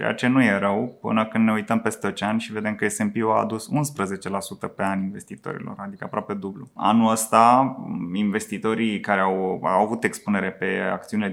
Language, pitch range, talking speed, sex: Romanian, 100-110 Hz, 180 wpm, male